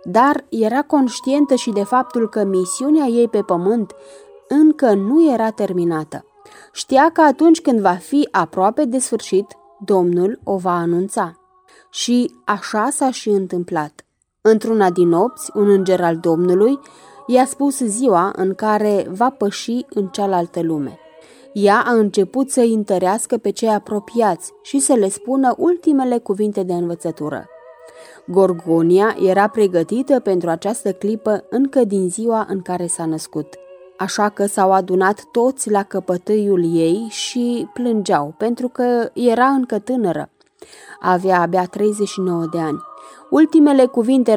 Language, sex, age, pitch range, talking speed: Romanian, female, 20-39, 185-245 Hz, 135 wpm